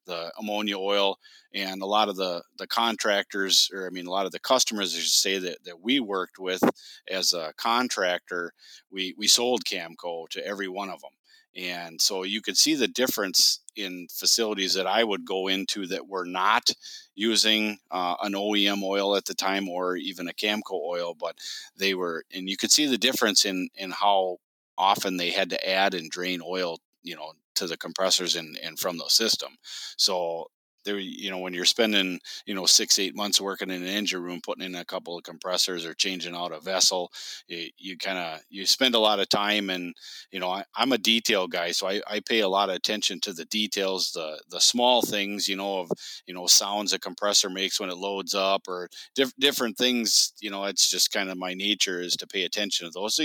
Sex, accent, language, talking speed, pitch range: male, American, English, 215 wpm, 90-105 Hz